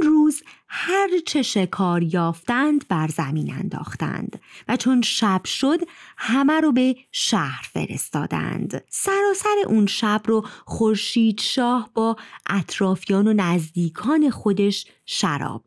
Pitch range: 185-265 Hz